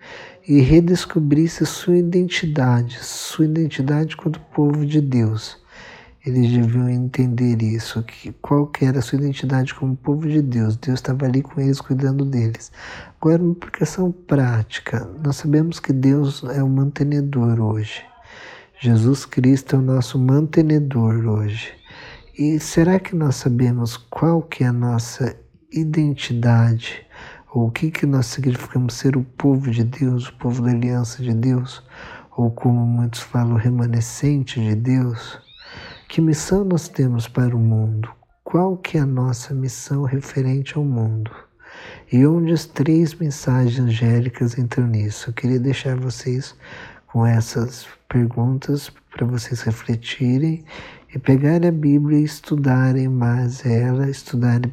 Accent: Brazilian